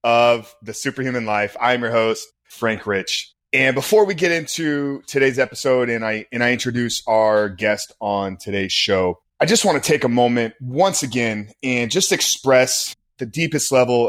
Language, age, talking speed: English, 20-39, 175 wpm